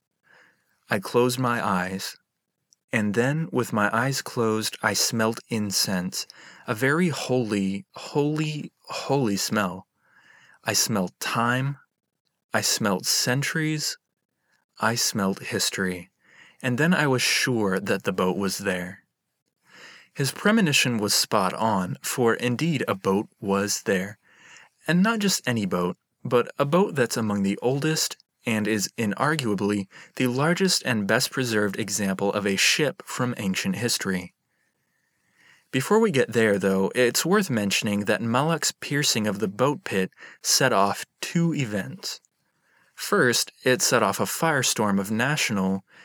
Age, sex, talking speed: 30-49, male, 135 wpm